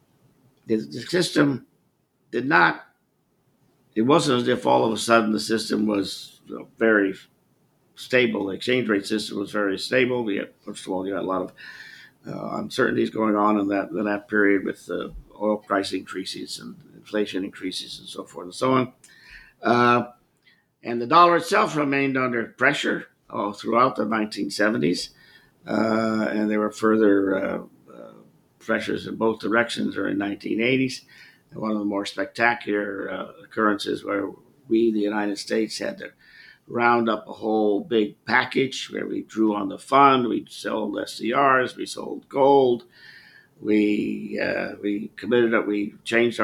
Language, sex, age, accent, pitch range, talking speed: English, male, 50-69, American, 105-125 Hz, 160 wpm